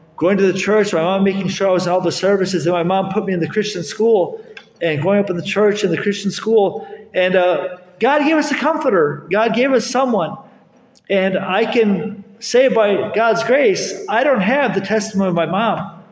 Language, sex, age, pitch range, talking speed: English, male, 40-59, 170-210 Hz, 220 wpm